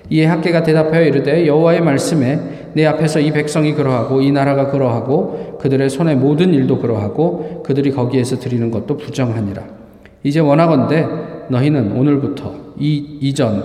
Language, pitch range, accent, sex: Korean, 125-155 Hz, native, male